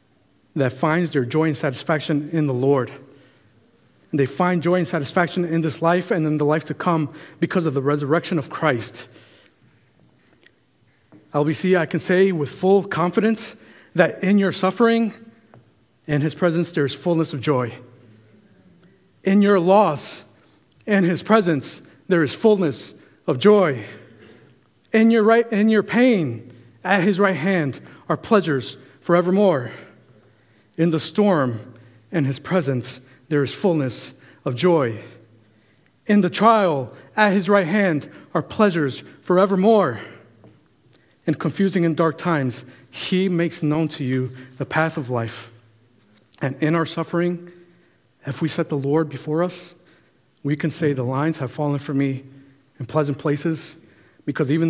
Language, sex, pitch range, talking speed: English, male, 130-175 Hz, 145 wpm